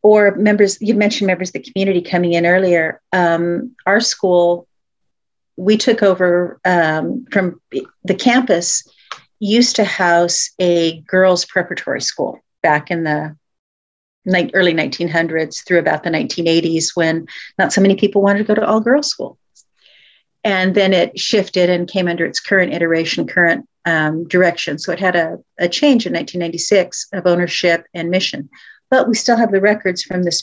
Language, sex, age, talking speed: English, female, 40-59, 160 wpm